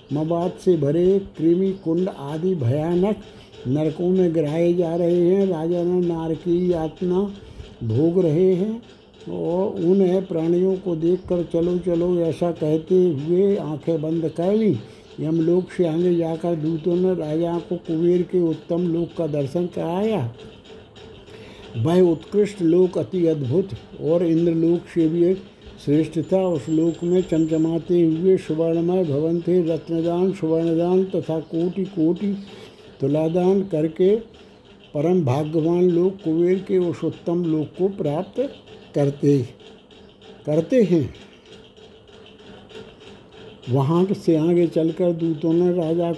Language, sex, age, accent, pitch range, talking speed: Hindi, male, 60-79, native, 160-180 Hz, 120 wpm